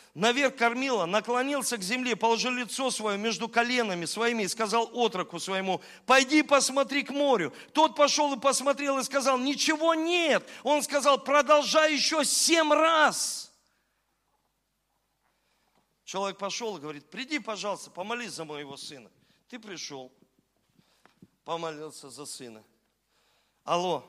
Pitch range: 175-270 Hz